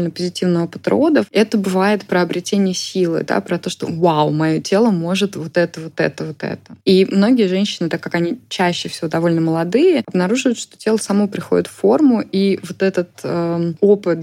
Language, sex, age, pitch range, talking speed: Russian, female, 20-39, 160-190 Hz, 185 wpm